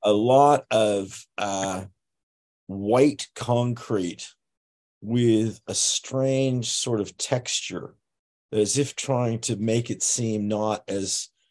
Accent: American